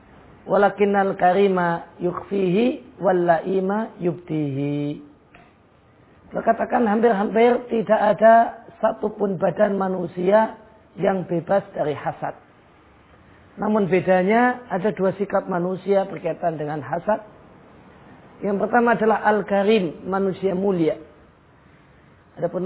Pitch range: 175-220 Hz